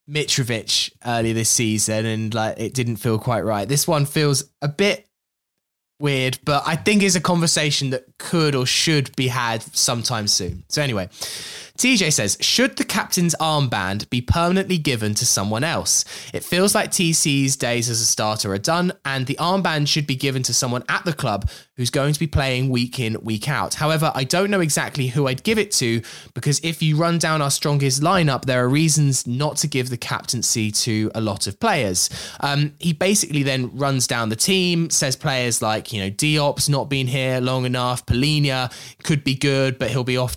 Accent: British